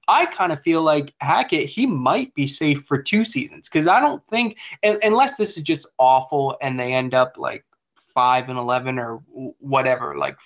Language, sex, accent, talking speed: English, male, American, 195 wpm